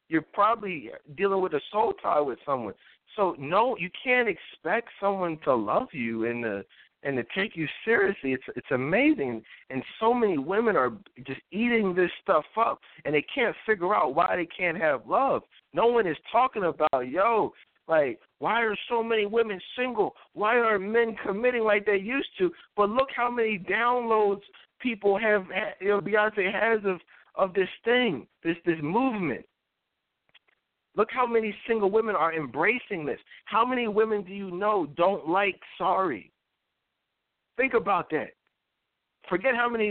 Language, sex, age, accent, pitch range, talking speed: English, male, 60-79, American, 185-235 Hz, 165 wpm